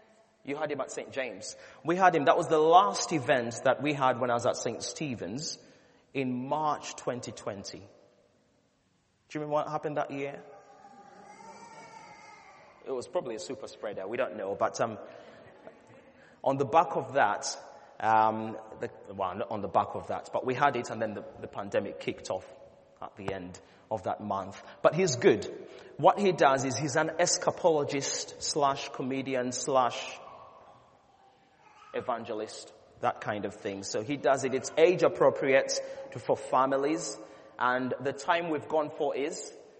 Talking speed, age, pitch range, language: 165 wpm, 30-49, 120-165 Hz, English